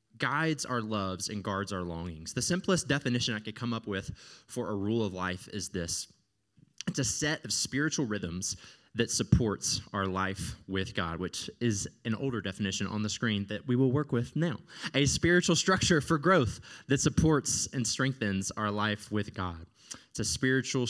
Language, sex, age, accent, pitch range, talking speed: English, male, 20-39, American, 100-130 Hz, 185 wpm